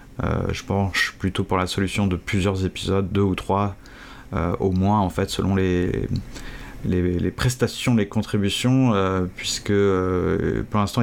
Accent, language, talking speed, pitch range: French, French, 165 wpm, 95-115 Hz